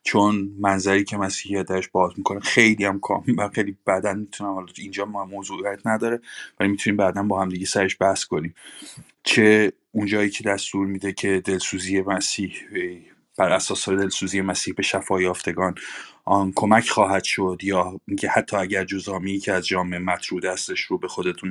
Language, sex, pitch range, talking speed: Persian, male, 90-100 Hz, 160 wpm